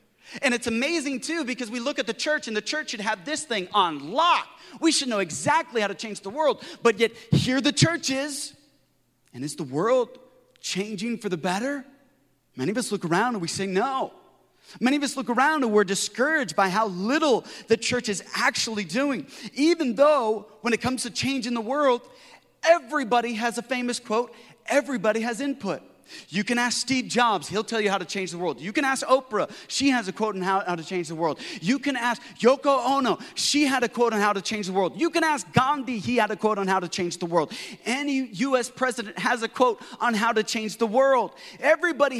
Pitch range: 195-270 Hz